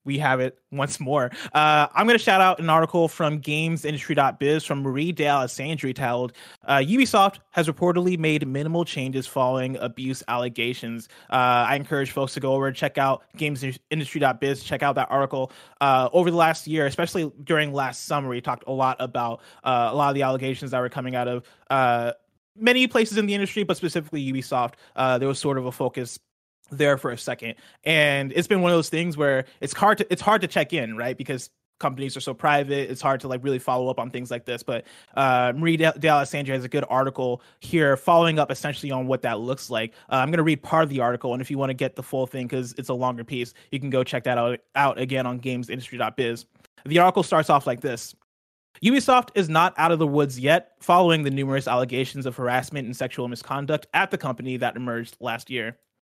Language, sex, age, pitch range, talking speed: English, male, 20-39, 125-155 Hz, 215 wpm